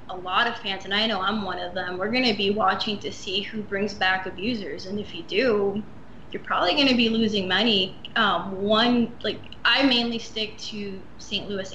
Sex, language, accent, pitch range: female, English, American, 195-225 Hz